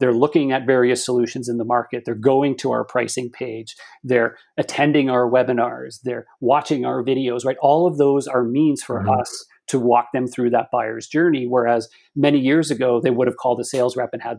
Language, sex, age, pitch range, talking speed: English, male, 40-59, 120-145 Hz, 210 wpm